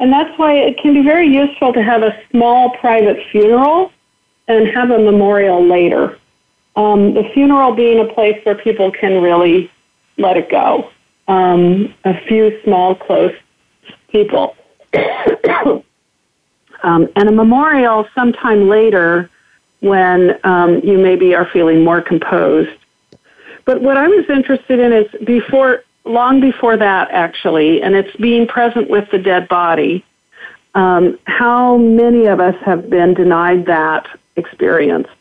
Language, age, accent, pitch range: English, 50-69, American, 180-235 Hz